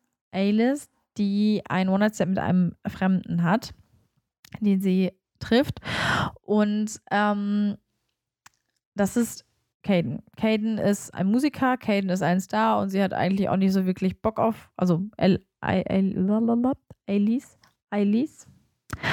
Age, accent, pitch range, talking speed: 20-39, German, 185-215 Hz, 115 wpm